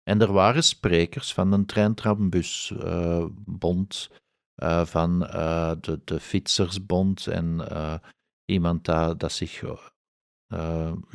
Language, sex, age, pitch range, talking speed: Dutch, male, 50-69, 90-110 Hz, 115 wpm